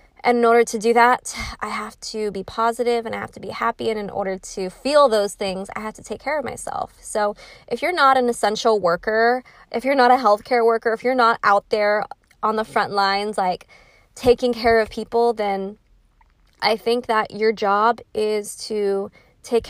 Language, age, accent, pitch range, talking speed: English, 20-39, American, 195-230 Hz, 205 wpm